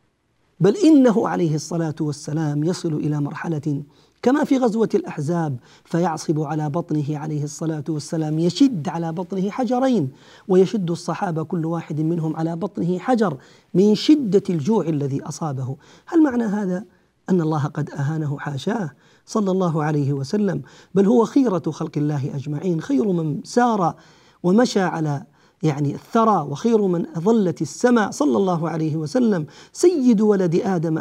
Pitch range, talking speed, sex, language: 155-205 Hz, 135 wpm, male, Arabic